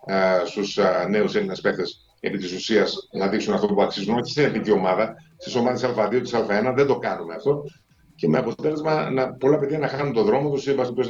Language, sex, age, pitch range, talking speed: Greek, male, 50-69, 105-140 Hz, 190 wpm